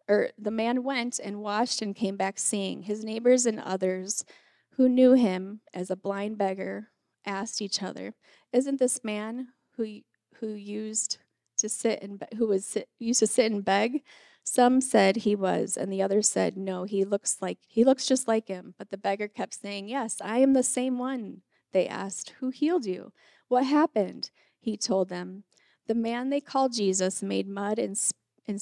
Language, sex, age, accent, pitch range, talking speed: English, female, 30-49, American, 200-245 Hz, 185 wpm